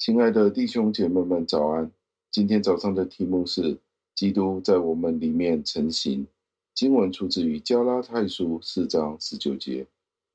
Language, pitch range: Chinese, 80-100 Hz